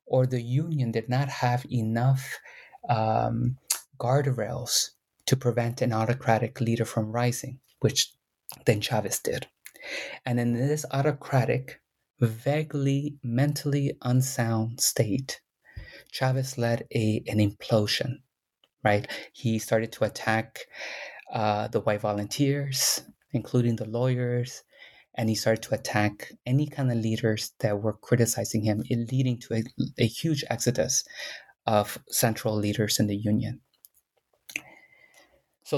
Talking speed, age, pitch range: 120 wpm, 30-49, 110-135 Hz